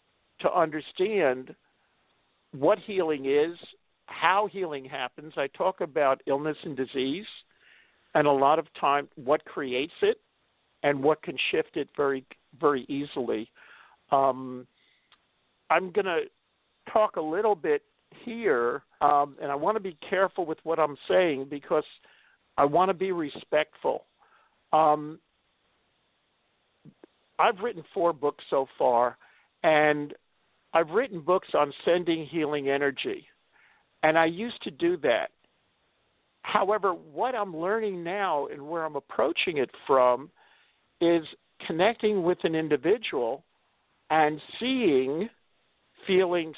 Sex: male